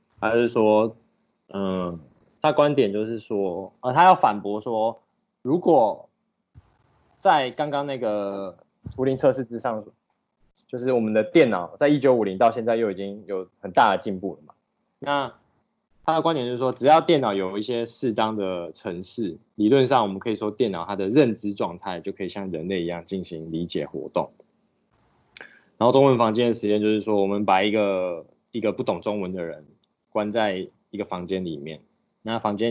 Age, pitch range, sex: 20-39, 100-125 Hz, male